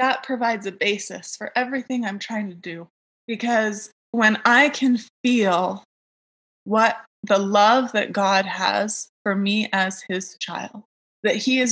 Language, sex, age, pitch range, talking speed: English, female, 20-39, 200-235 Hz, 150 wpm